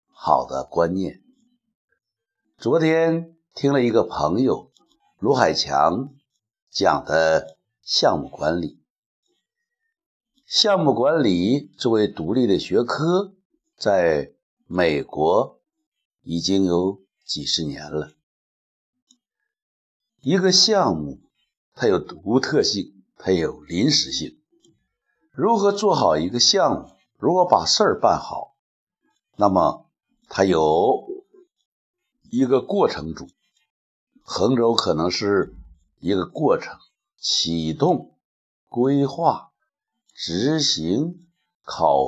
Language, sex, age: Chinese, male, 60-79